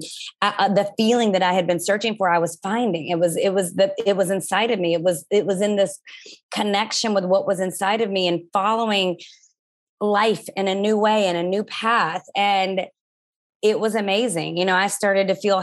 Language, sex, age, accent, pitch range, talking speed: English, female, 20-39, American, 185-210 Hz, 215 wpm